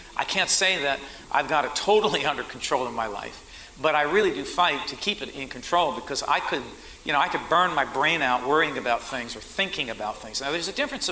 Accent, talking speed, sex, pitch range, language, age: American, 245 wpm, male, 140-205 Hz, English, 50-69